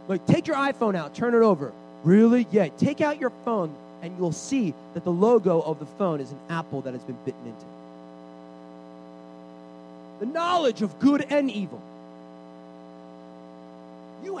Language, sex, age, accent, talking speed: English, male, 30-49, American, 165 wpm